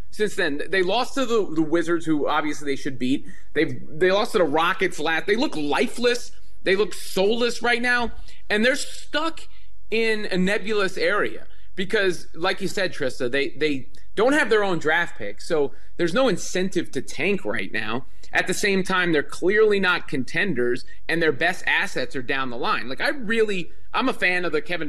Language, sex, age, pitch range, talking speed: English, male, 30-49, 150-200 Hz, 200 wpm